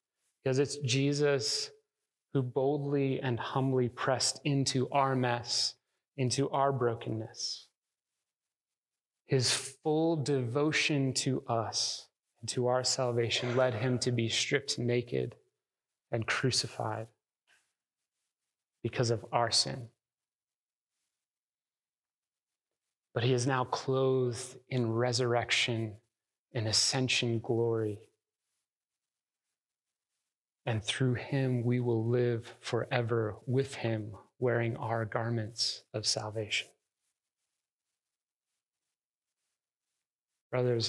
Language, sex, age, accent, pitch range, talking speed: English, male, 30-49, American, 115-130 Hz, 90 wpm